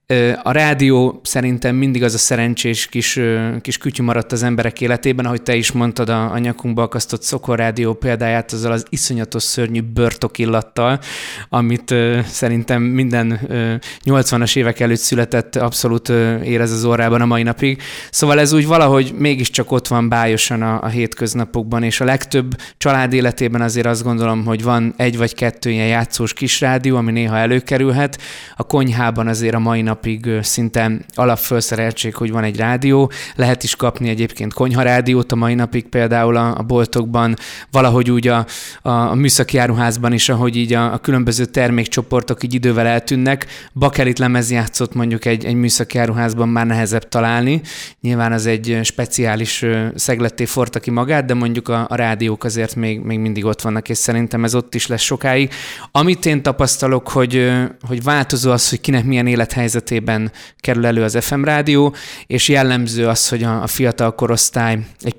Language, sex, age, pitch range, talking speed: Hungarian, male, 20-39, 115-125 Hz, 160 wpm